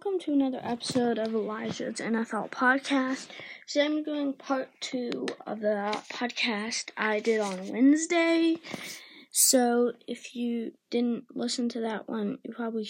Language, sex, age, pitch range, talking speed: English, female, 20-39, 235-280 Hz, 145 wpm